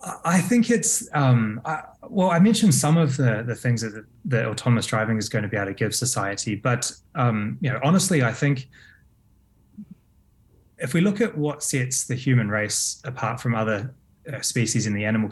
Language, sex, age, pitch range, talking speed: English, male, 20-39, 110-135 Hz, 190 wpm